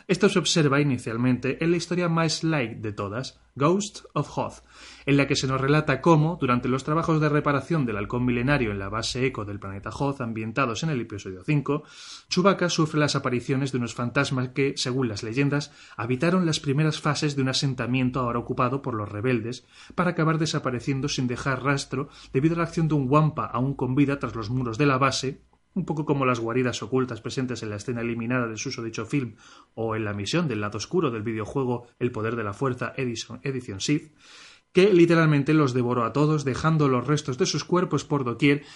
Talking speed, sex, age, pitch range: 205 wpm, male, 30-49, 120-150 Hz